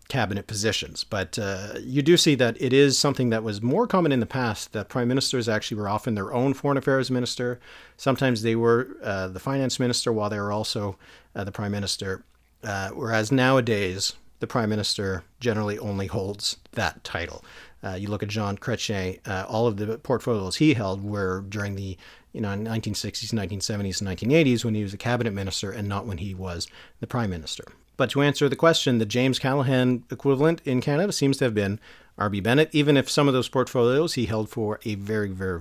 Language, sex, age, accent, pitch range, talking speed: English, male, 40-59, American, 100-130 Hz, 200 wpm